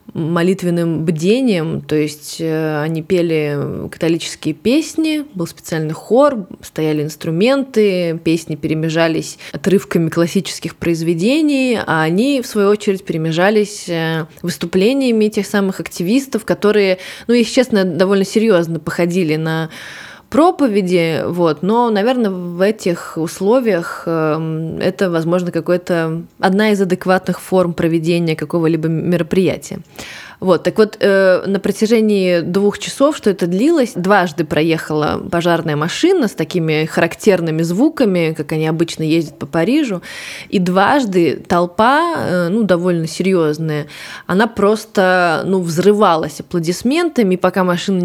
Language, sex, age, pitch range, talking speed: Russian, female, 20-39, 165-205 Hz, 115 wpm